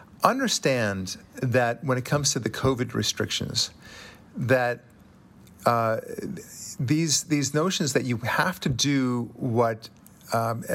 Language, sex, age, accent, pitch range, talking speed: English, male, 50-69, American, 110-135 Hz, 115 wpm